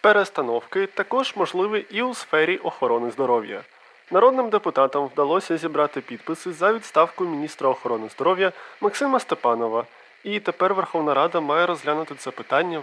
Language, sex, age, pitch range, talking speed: Ukrainian, male, 20-39, 140-210 Hz, 130 wpm